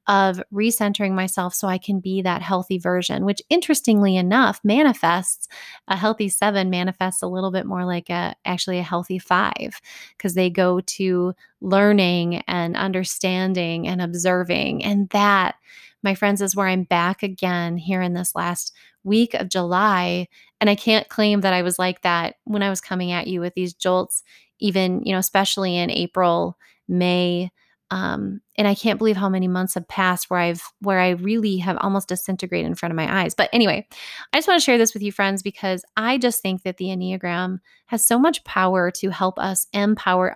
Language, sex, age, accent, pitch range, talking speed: English, female, 20-39, American, 180-210 Hz, 190 wpm